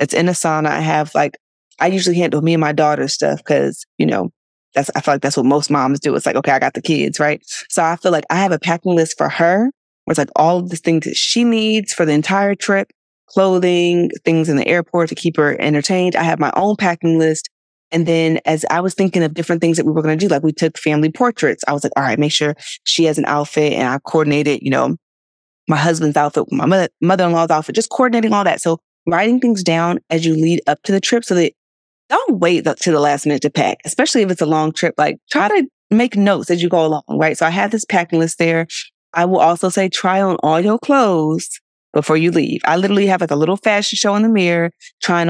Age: 20-39